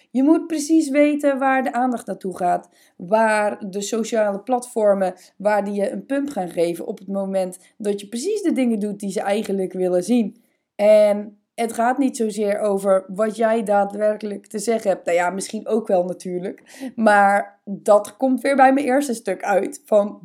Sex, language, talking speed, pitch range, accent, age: female, Dutch, 185 wpm, 195-245 Hz, Dutch, 20-39